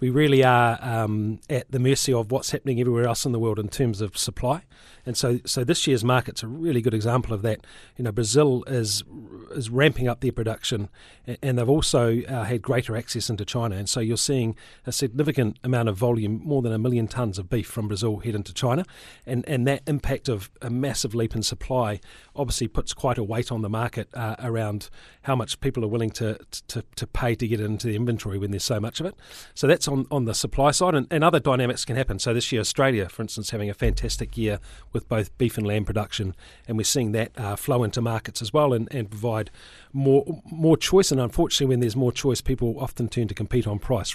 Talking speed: 230 wpm